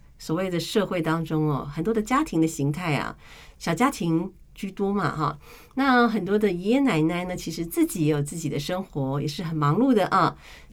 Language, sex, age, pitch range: Chinese, female, 50-69, 160-225 Hz